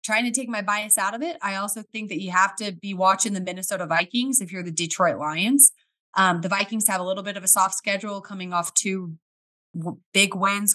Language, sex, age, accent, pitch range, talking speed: English, female, 20-39, American, 175-215 Hz, 230 wpm